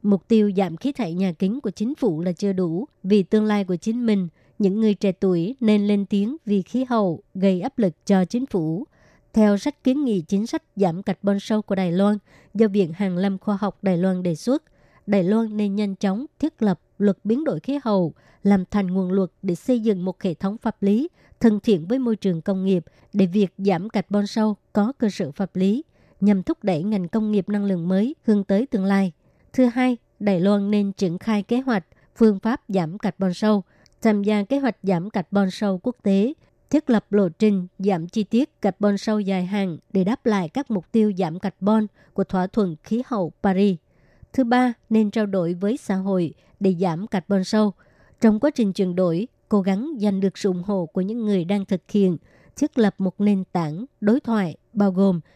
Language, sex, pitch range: Vietnamese, male, 190-220 Hz